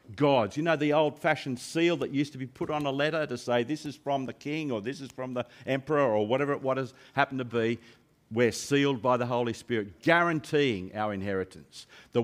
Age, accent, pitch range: 50-69, Australian, 115-155 Hz